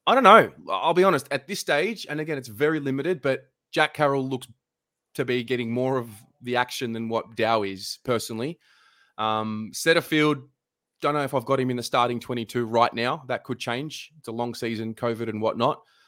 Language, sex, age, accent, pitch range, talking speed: English, male, 20-39, Australian, 110-130 Hz, 205 wpm